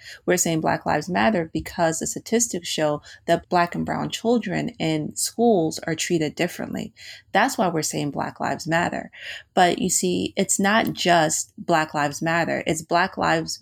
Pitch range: 155-185 Hz